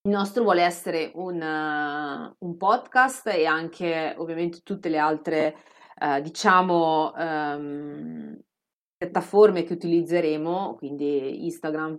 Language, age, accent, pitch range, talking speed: Italian, 30-49, native, 155-190 Hz, 110 wpm